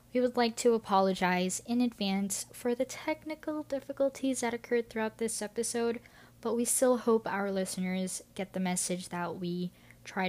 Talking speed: 165 wpm